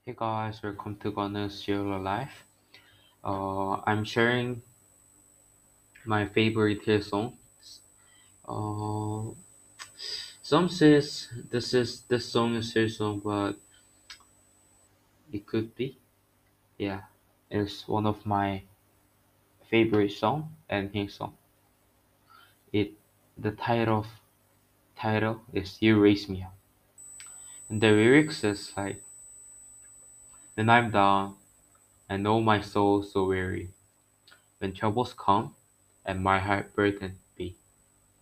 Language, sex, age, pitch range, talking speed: English, male, 20-39, 100-110 Hz, 110 wpm